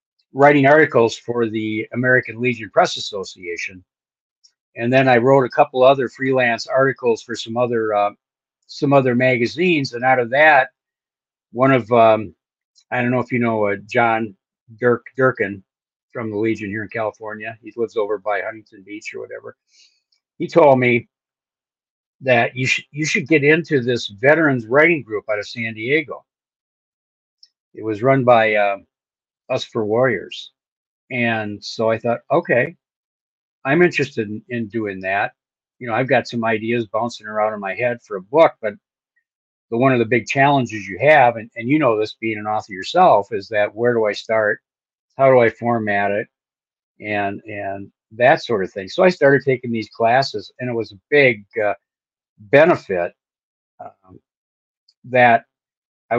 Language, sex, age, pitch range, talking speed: English, male, 50-69, 110-135 Hz, 170 wpm